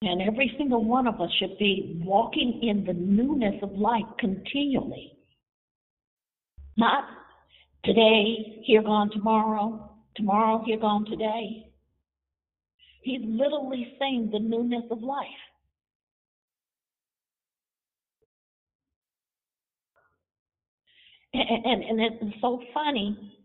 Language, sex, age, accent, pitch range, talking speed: English, female, 50-69, American, 215-270 Hz, 95 wpm